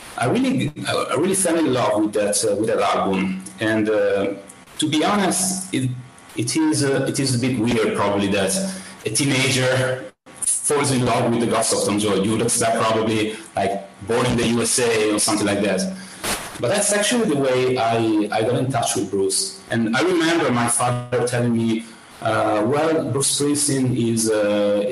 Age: 30-49